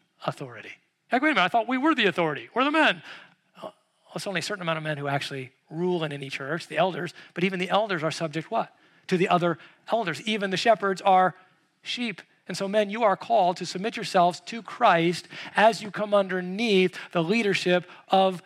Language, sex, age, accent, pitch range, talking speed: English, male, 40-59, American, 165-205 Hz, 200 wpm